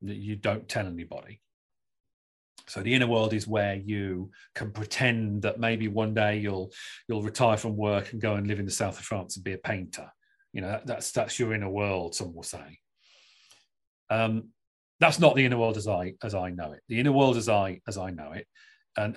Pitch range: 105-135 Hz